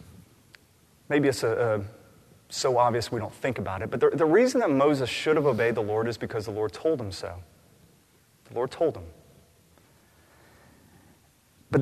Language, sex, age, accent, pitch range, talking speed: English, male, 30-49, American, 105-135 Hz, 175 wpm